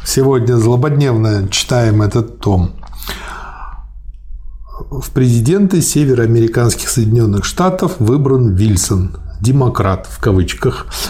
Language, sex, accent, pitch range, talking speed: Russian, male, native, 110-145 Hz, 80 wpm